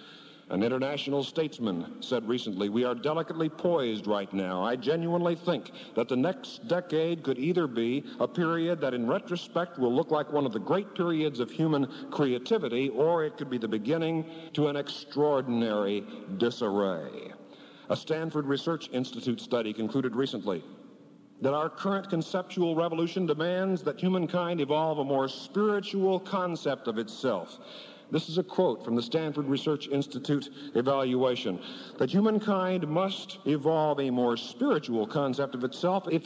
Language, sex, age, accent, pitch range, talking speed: English, male, 60-79, American, 125-175 Hz, 150 wpm